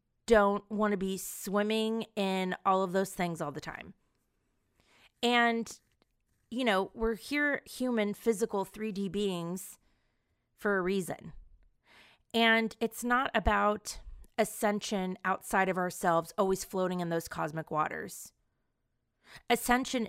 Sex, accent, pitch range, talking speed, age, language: female, American, 180-225 Hz, 120 wpm, 30-49, English